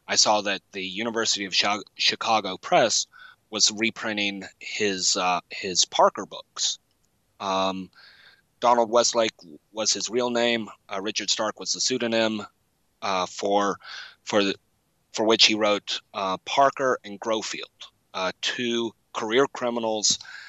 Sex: male